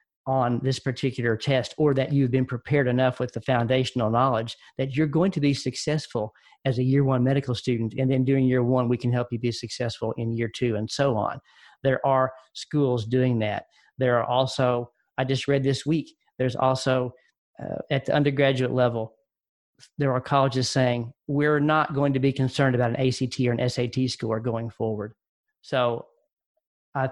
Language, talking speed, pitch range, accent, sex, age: English, 185 wpm, 125-145 Hz, American, male, 40-59